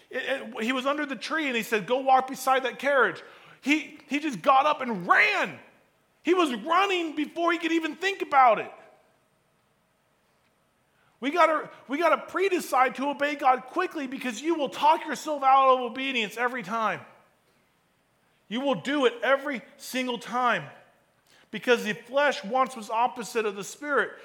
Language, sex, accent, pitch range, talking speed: English, male, American, 245-300 Hz, 165 wpm